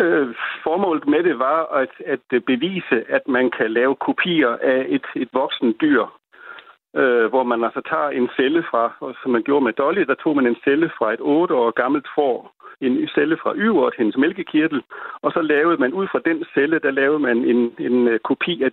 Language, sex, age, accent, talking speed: Danish, male, 60-79, native, 210 wpm